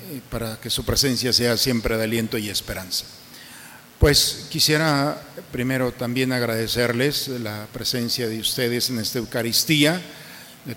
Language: Spanish